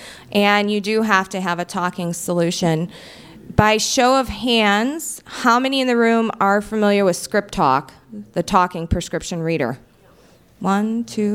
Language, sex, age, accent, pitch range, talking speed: English, female, 20-39, American, 185-240 Hz, 150 wpm